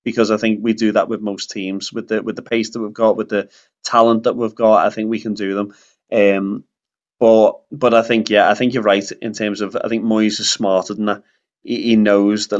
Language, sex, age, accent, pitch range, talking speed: English, male, 20-39, British, 105-115 Hz, 250 wpm